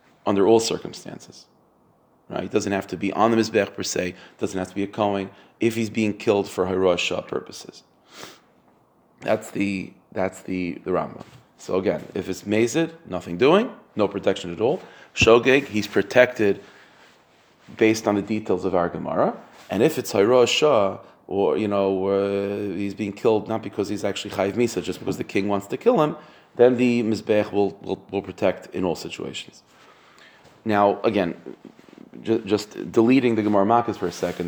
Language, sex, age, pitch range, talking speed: English, male, 30-49, 95-115 Hz, 180 wpm